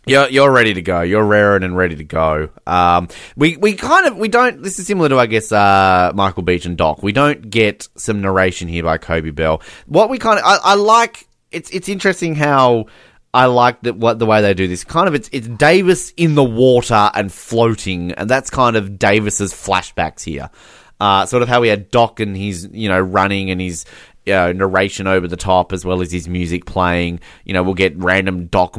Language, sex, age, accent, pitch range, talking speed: English, male, 20-39, Australian, 90-115 Hz, 225 wpm